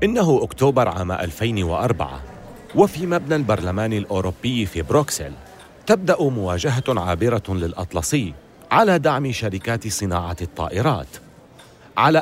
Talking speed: 100 wpm